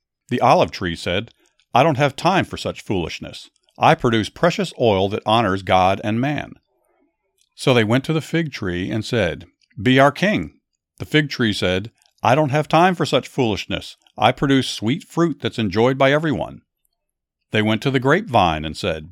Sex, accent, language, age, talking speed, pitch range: male, American, English, 50-69, 180 wpm, 105-145 Hz